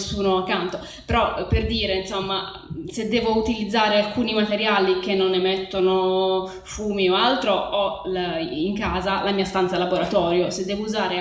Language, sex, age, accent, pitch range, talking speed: Italian, female, 20-39, native, 190-225 Hz, 140 wpm